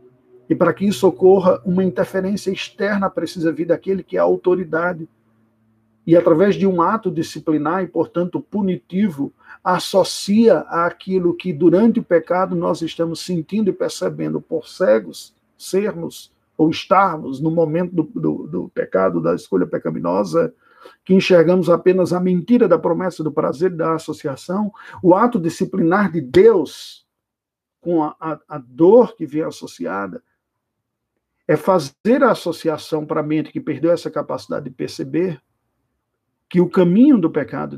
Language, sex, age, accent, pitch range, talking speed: Portuguese, male, 50-69, Brazilian, 155-190 Hz, 145 wpm